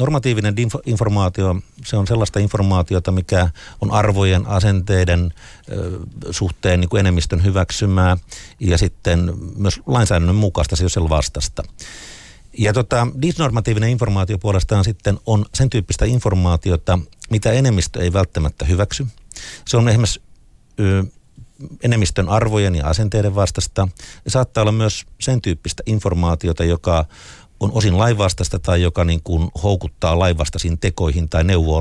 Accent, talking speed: native, 130 wpm